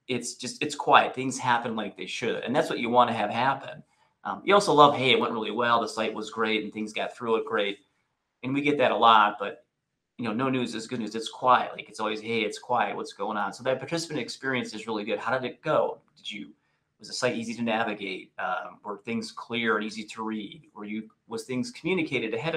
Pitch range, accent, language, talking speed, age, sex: 110-130 Hz, American, English, 250 wpm, 30-49, male